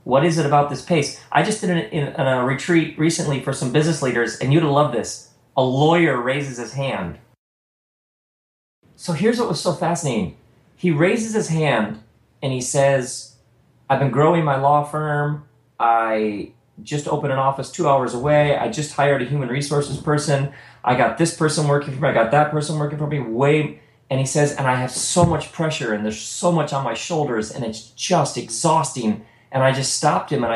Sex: male